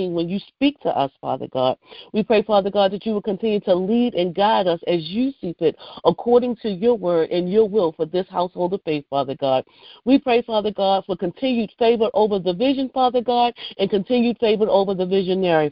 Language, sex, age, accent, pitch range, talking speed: English, female, 40-59, American, 180-235 Hz, 215 wpm